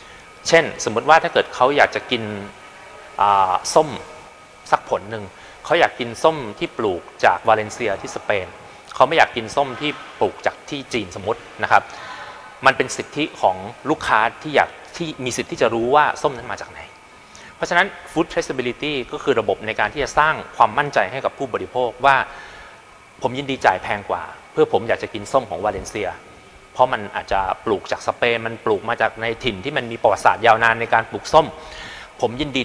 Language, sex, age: Thai, male, 30-49